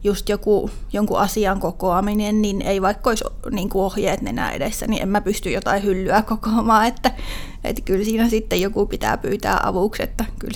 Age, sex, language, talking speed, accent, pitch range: 30-49, female, Finnish, 170 wpm, native, 200-235 Hz